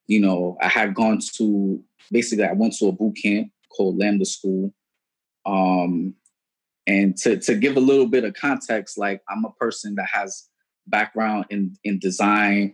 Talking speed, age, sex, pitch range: 170 wpm, 20-39, male, 100-130 Hz